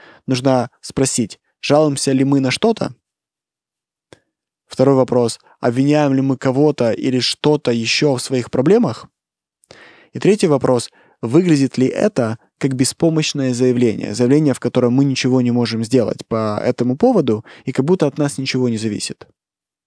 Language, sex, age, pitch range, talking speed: Russian, male, 20-39, 120-145 Hz, 140 wpm